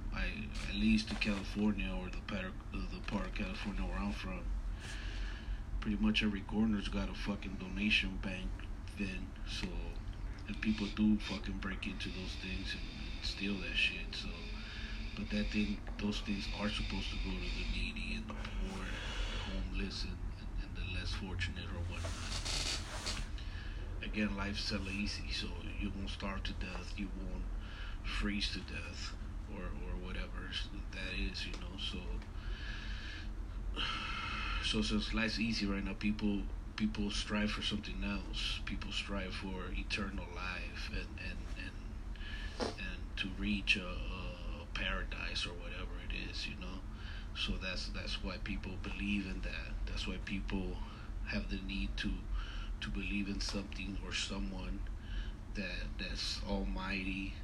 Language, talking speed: English, 155 wpm